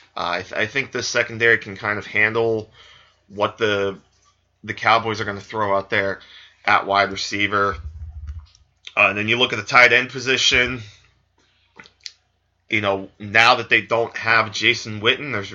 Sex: male